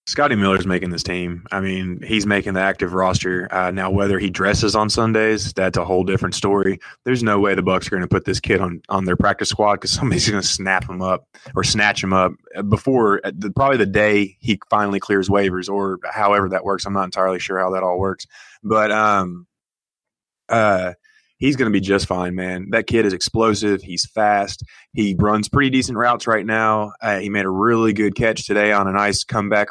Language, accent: English, American